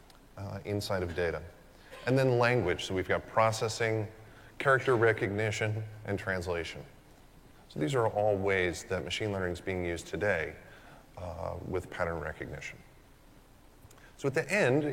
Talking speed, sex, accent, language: 140 wpm, male, American, English